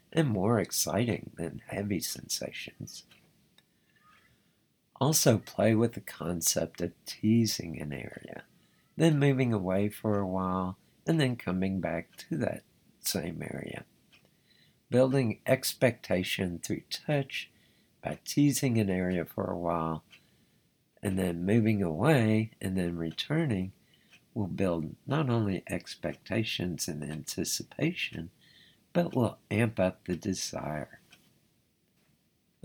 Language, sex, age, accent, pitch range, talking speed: English, male, 60-79, American, 95-130 Hz, 110 wpm